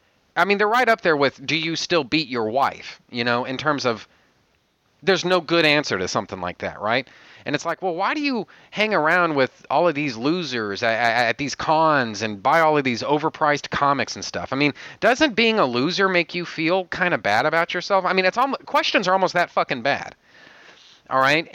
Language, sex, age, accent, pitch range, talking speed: English, male, 30-49, American, 125-180 Hz, 225 wpm